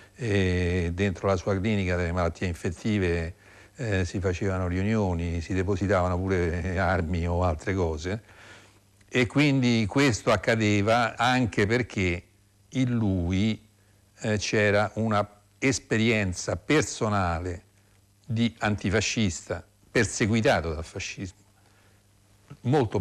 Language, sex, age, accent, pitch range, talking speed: Italian, male, 60-79, native, 95-110 Hz, 100 wpm